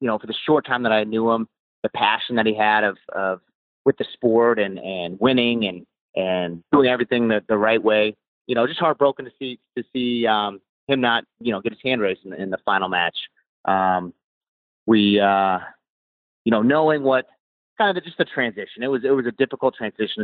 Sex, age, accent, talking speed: male, 30-49, American, 215 wpm